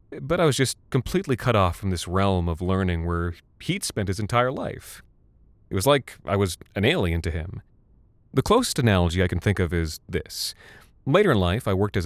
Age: 30-49